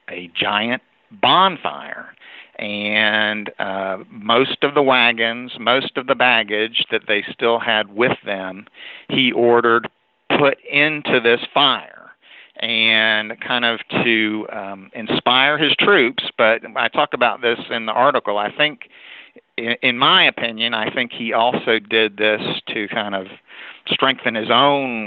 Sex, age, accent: male, 50-69, American